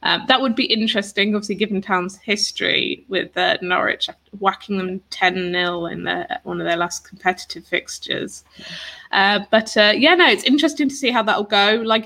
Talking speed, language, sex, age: 185 wpm, English, female, 20-39